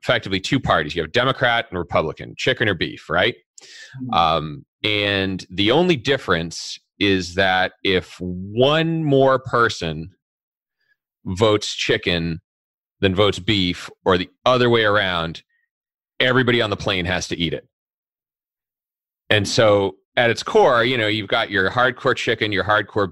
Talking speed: 145 wpm